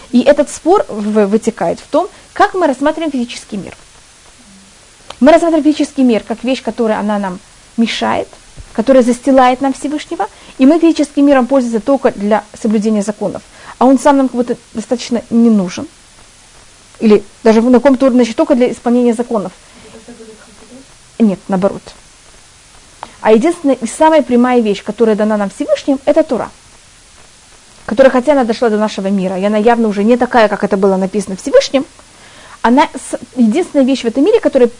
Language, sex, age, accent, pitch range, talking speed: Russian, female, 30-49, native, 225-290 Hz, 155 wpm